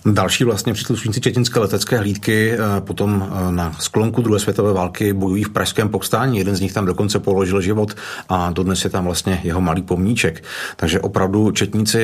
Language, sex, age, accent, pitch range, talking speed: Czech, male, 40-59, native, 95-110 Hz, 170 wpm